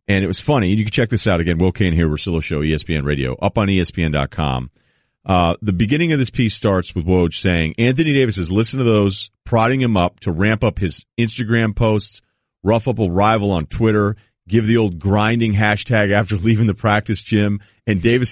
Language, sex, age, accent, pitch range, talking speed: English, male, 40-59, American, 95-115 Hz, 210 wpm